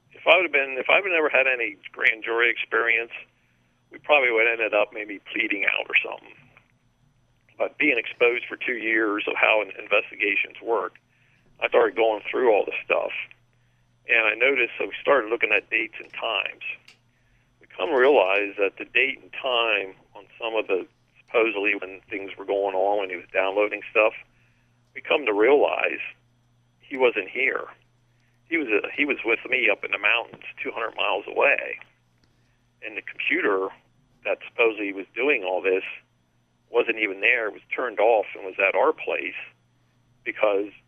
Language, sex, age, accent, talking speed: English, male, 50-69, American, 175 wpm